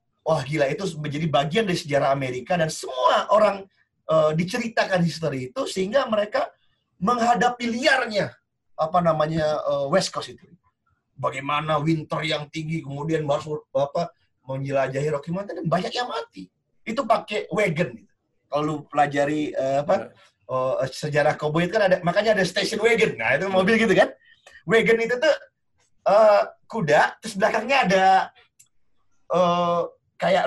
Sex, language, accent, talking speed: male, Indonesian, native, 140 wpm